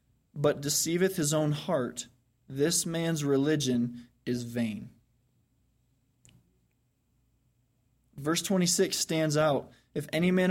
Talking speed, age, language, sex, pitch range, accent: 95 wpm, 20-39, English, male, 125-150 Hz, American